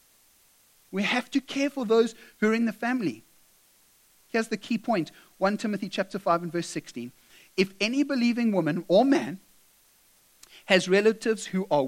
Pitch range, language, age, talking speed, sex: 155-220 Hz, English, 30-49, 160 wpm, male